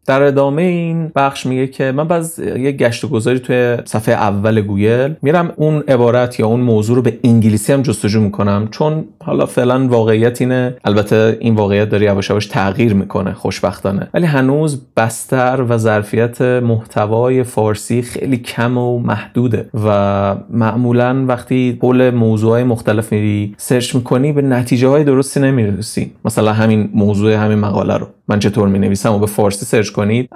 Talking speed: 155 wpm